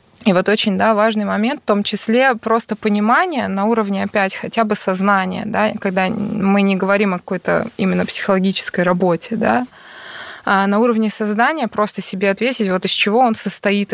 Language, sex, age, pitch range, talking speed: Russian, female, 20-39, 195-230 Hz, 170 wpm